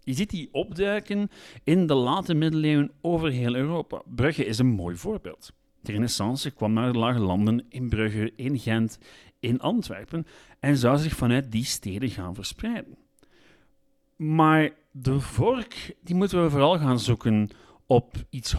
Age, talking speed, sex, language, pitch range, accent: 40-59, 155 wpm, male, Dutch, 110-165 Hz, Dutch